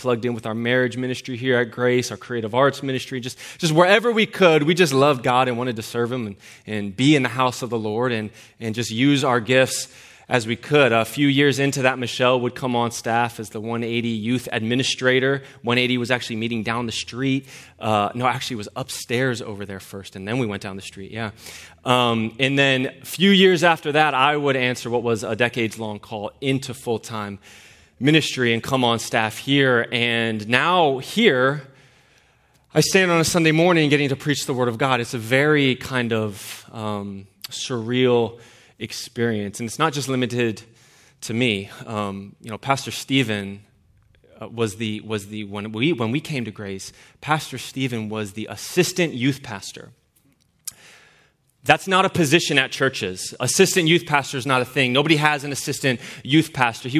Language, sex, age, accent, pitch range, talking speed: English, male, 20-39, American, 115-145 Hz, 195 wpm